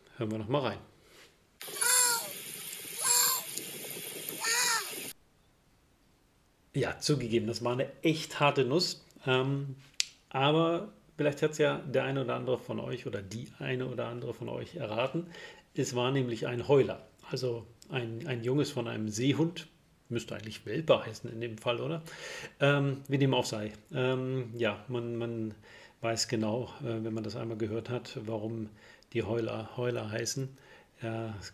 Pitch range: 110-135 Hz